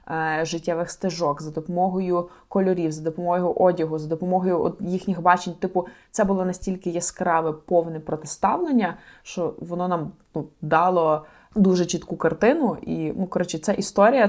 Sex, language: female, Ukrainian